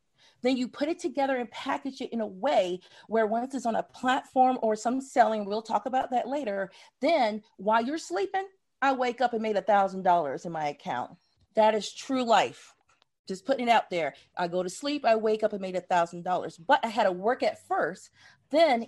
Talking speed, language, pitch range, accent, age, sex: 220 wpm, English, 190-245 Hz, American, 40-59, female